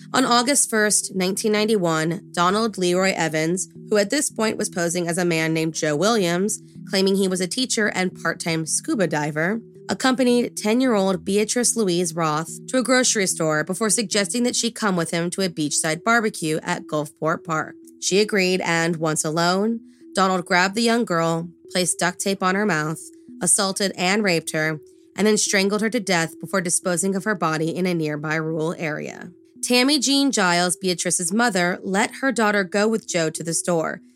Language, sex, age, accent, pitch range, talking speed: English, female, 20-39, American, 165-220 Hz, 175 wpm